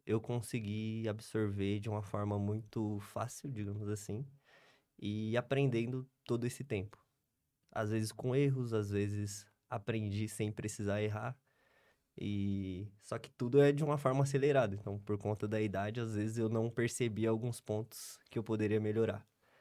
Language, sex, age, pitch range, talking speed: Portuguese, male, 20-39, 100-120 Hz, 155 wpm